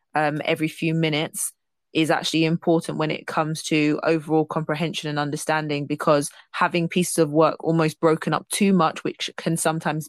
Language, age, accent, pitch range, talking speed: English, 20-39, British, 155-170 Hz, 165 wpm